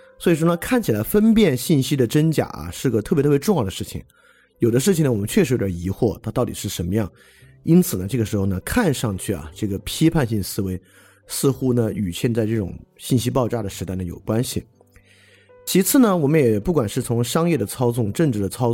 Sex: male